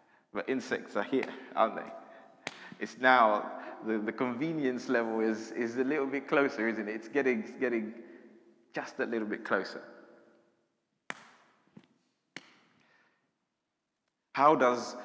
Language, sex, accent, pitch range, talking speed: English, male, British, 110-130 Hz, 125 wpm